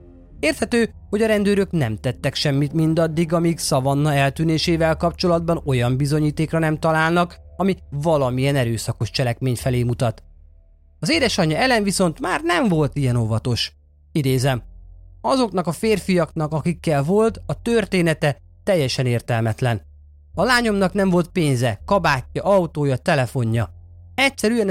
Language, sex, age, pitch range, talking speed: Hungarian, male, 30-49, 120-175 Hz, 120 wpm